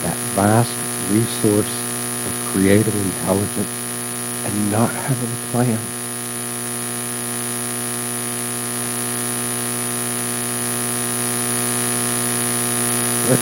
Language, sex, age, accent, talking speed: English, male, 60-79, American, 55 wpm